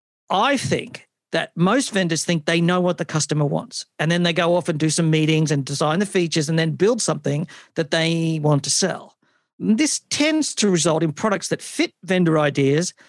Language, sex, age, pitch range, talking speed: English, male, 50-69, 155-195 Hz, 200 wpm